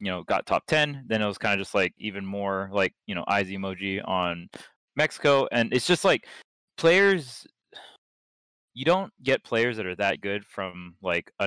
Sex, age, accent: male, 20-39, American